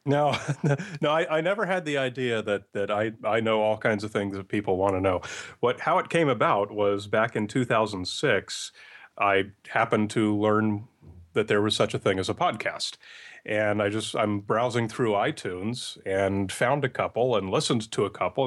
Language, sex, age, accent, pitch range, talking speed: English, male, 30-49, American, 100-125 Hz, 200 wpm